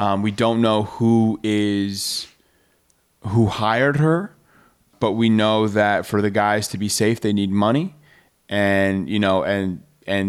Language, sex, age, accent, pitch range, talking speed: English, male, 30-49, American, 100-115 Hz, 155 wpm